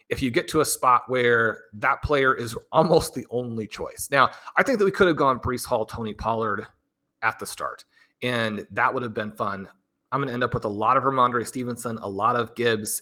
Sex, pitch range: male, 115-150 Hz